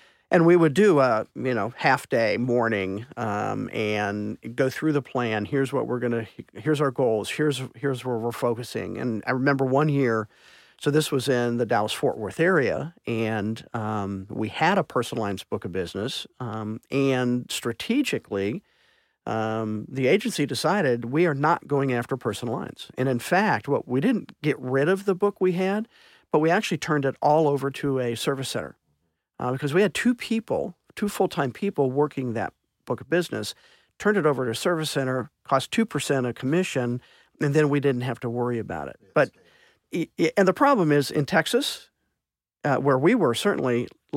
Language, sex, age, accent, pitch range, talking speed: English, male, 50-69, American, 120-160 Hz, 185 wpm